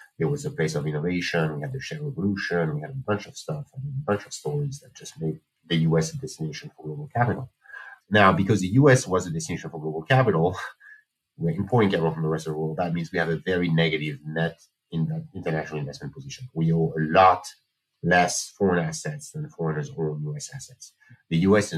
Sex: male